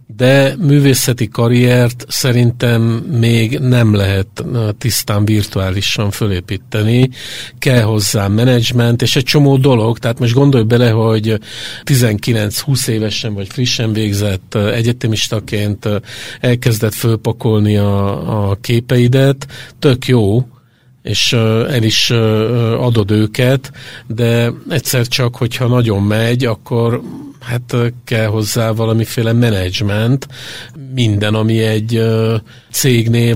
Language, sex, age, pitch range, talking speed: Hungarian, male, 50-69, 110-125 Hz, 100 wpm